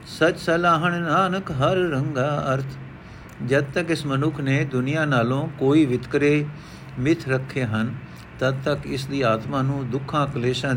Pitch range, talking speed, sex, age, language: 125-155 Hz, 145 wpm, male, 50-69, Punjabi